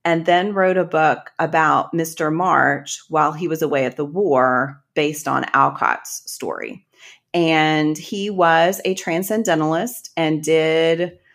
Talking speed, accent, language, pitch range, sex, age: 140 wpm, American, English, 145-170 Hz, female, 30-49